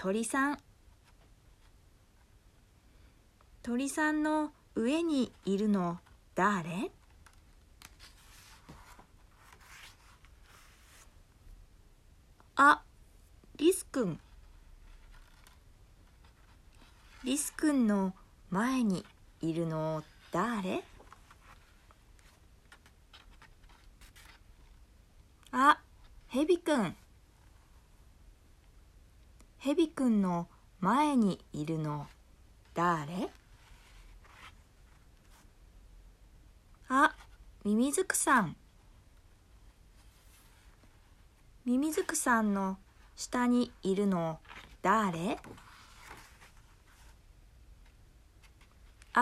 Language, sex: Japanese, female